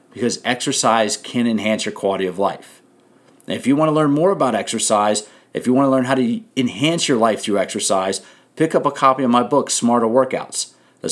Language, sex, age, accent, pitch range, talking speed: English, male, 40-59, American, 110-135 Hz, 210 wpm